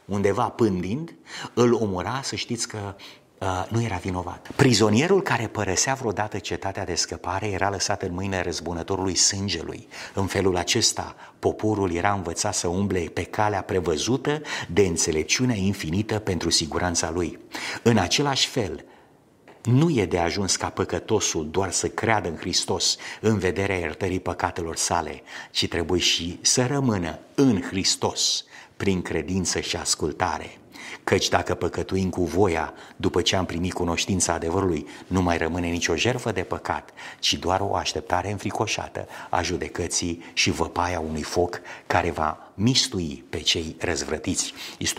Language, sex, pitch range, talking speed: Romanian, male, 85-105 Hz, 140 wpm